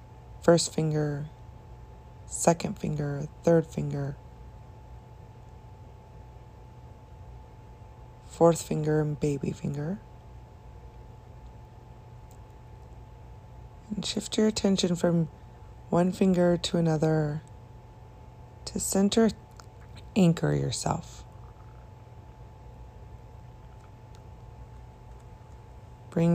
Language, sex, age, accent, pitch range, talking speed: English, female, 20-39, American, 110-170 Hz, 55 wpm